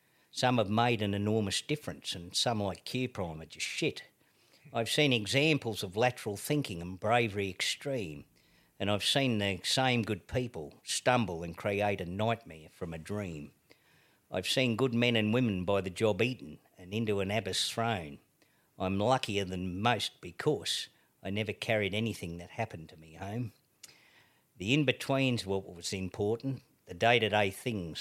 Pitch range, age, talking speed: 95-120 Hz, 50-69, 165 wpm